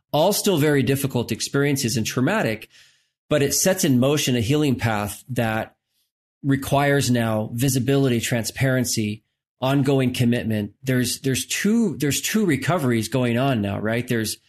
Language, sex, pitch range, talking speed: English, male, 115-140 Hz, 135 wpm